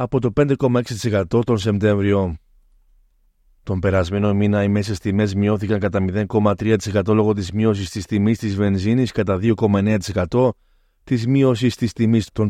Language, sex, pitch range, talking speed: Greek, male, 105-120 Hz, 135 wpm